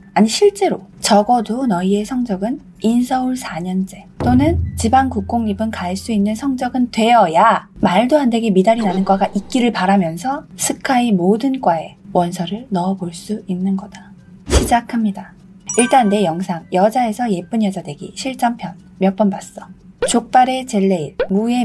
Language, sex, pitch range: Korean, female, 190-245 Hz